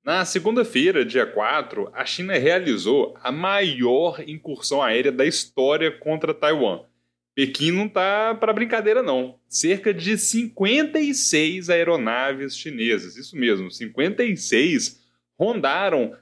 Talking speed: 110 wpm